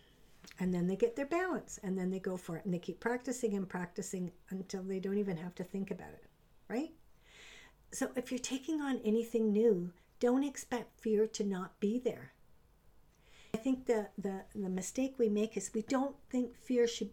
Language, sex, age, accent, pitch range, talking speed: English, female, 60-79, American, 175-225 Hz, 195 wpm